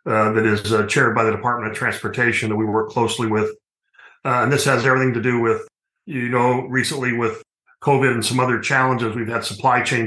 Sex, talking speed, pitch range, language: male, 215 wpm, 110-125 Hz, English